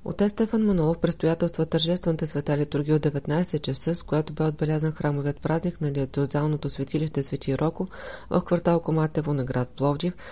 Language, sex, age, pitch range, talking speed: Bulgarian, female, 30-49, 145-170 Hz, 165 wpm